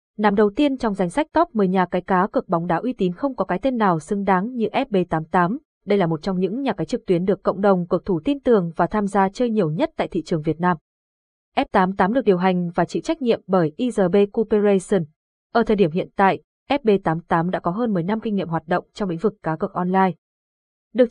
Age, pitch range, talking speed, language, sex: 20-39, 180-230 Hz, 240 wpm, Vietnamese, female